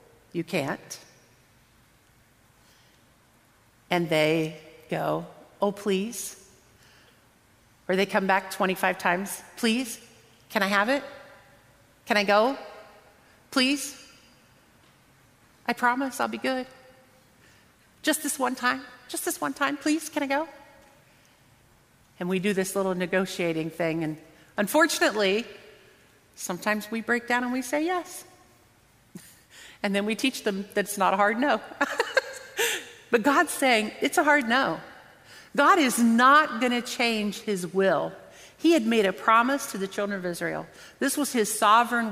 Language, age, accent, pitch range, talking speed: English, 40-59, American, 180-250 Hz, 135 wpm